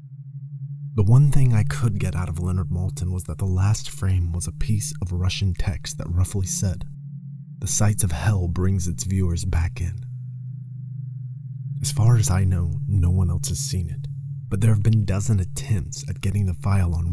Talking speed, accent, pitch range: 195 wpm, American, 85-120 Hz